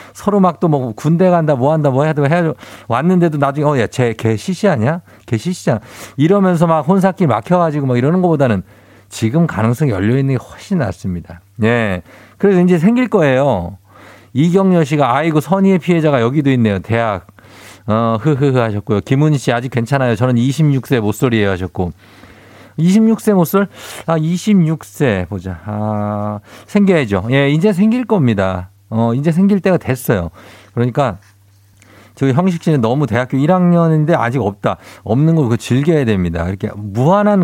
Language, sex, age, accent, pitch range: Korean, male, 50-69, native, 105-160 Hz